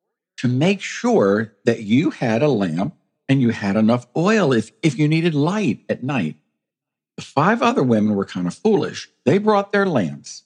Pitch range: 95-155 Hz